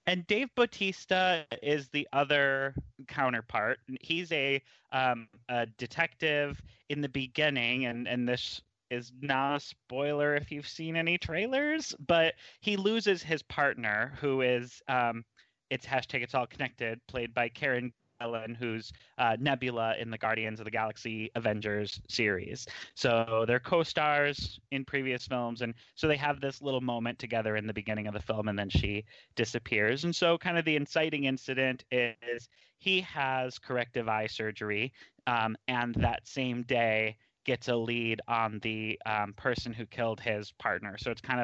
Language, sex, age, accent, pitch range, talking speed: English, male, 30-49, American, 110-140 Hz, 160 wpm